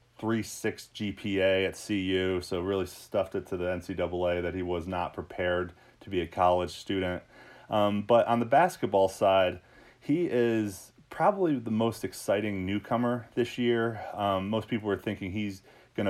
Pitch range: 90-105 Hz